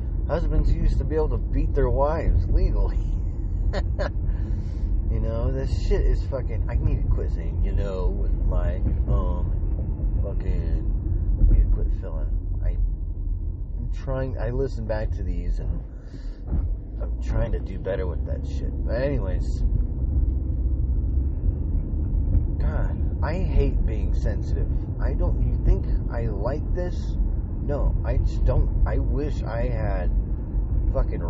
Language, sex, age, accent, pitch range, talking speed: English, male, 30-49, American, 75-95 Hz, 135 wpm